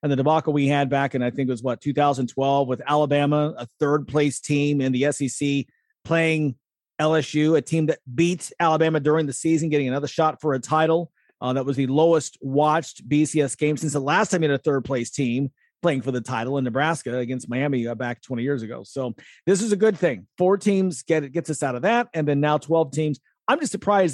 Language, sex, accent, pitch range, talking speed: English, male, American, 140-175 Hz, 225 wpm